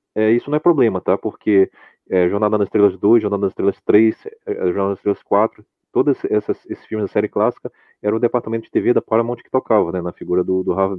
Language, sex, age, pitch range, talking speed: Portuguese, male, 30-49, 100-120 Hz, 230 wpm